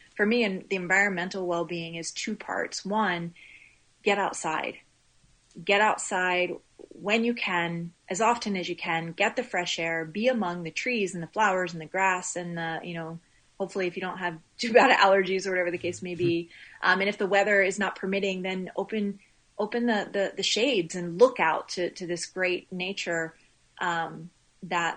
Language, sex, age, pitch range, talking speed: English, female, 30-49, 170-195 Hz, 185 wpm